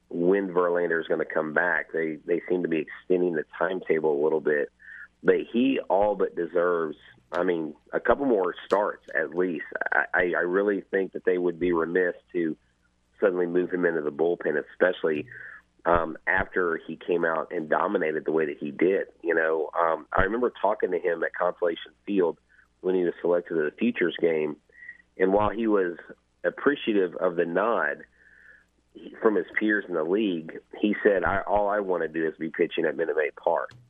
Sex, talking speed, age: male, 190 wpm, 40-59